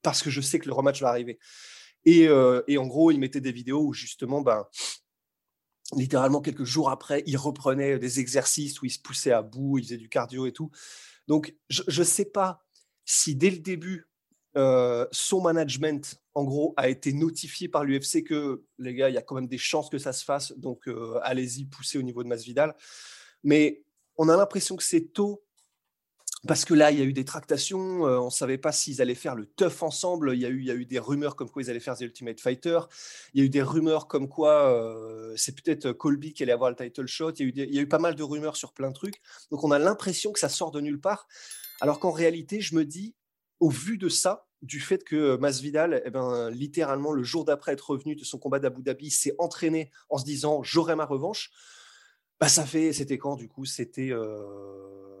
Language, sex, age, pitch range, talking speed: French, male, 20-39, 130-160 Hz, 240 wpm